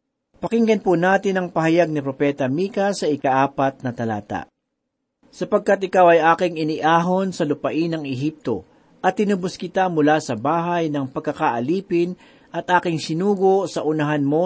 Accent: native